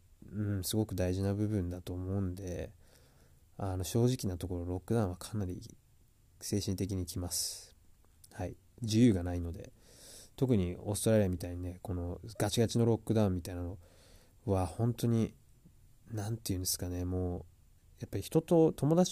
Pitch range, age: 90-120 Hz, 20-39